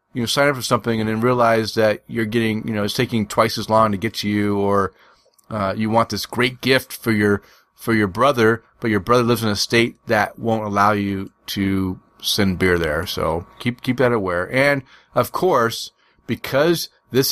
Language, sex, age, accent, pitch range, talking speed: English, male, 30-49, American, 110-140 Hz, 210 wpm